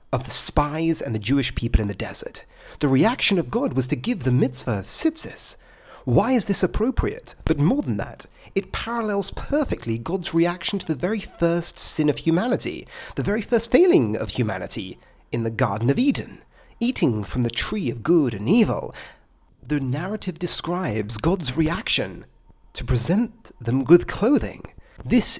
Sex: male